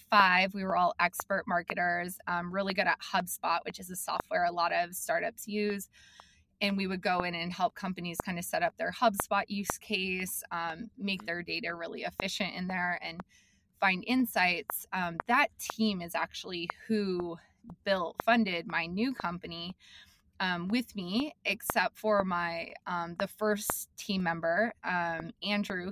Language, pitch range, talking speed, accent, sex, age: English, 175-210 Hz, 165 wpm, American, female, 20-39